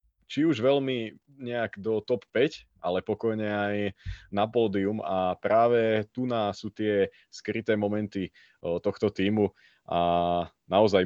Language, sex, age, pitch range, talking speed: Slovak, male, 20-39, 95-110 Hz, 130 wpm